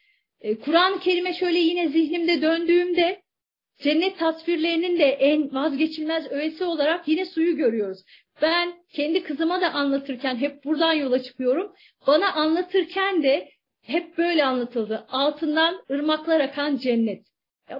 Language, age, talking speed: Turkish, 40-59, 120 wpm